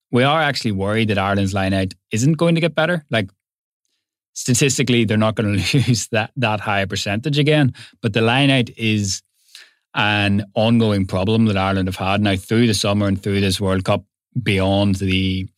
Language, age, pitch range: English, 20-39, 100-120 Hz